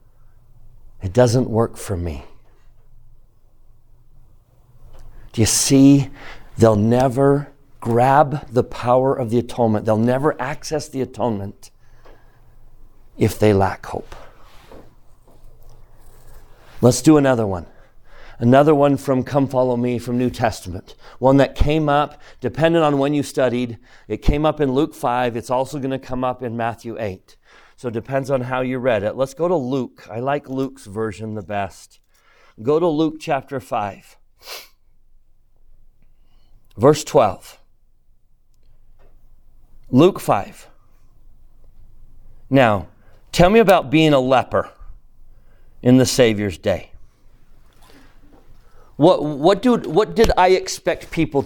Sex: male